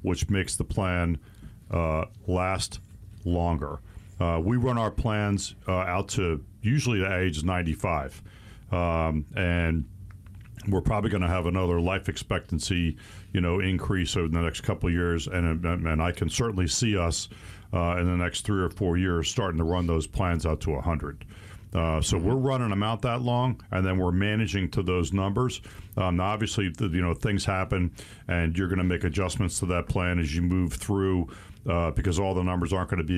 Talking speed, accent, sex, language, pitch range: 190 wpm, American, male, English, 85-105 Hz